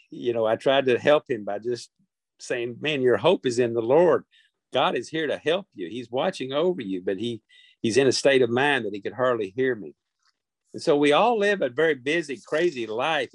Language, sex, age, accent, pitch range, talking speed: English, male, 50-69, American, 115-145 Hz, 230 wpm